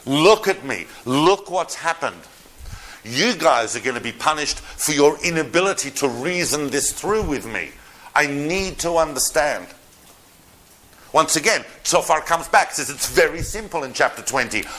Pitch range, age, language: 140-200 Hz, 50-69, English